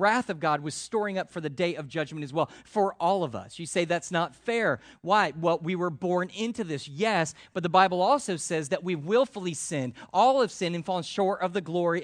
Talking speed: 240 wpm